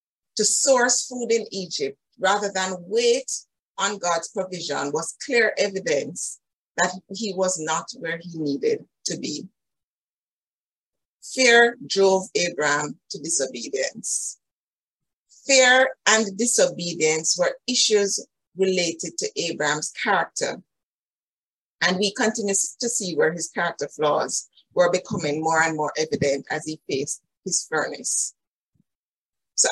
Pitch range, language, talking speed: 170-240 Hz, English, 115 wpm